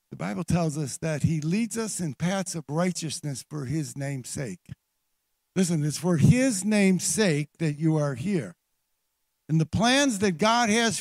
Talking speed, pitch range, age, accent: 175 wpm, 160-205 Hz, 60-79, American